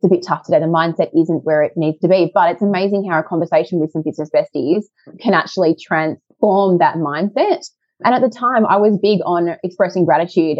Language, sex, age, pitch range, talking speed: English, female, 20-39, 165-210 Hz, 215 wpm